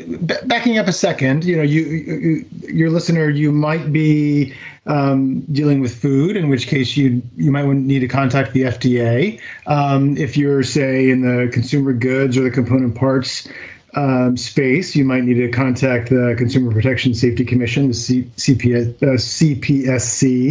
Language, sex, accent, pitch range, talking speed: English, male, American, 130-165 Hz, 160 wpm